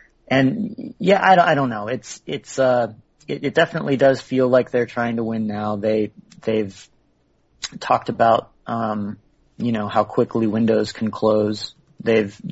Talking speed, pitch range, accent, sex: 165 wpm, 105-120 Hz, American, male